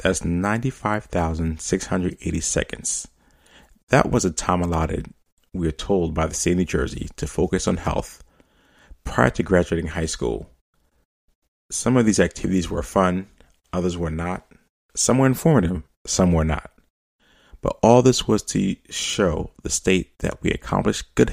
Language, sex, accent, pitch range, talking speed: English, male, American, 80-100 Hz, 150 wpm